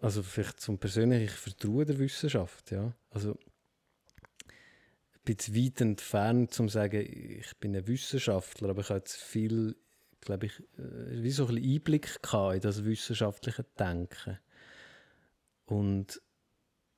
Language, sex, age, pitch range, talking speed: German, male, 30-49, 100-120 Hz, 130 wpm